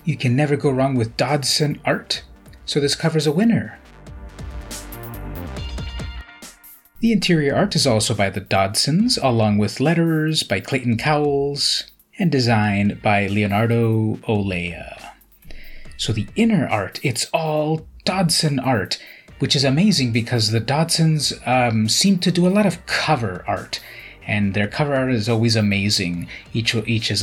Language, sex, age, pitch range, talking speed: English, male, 30-49, 105-155 Hz, 145 wpm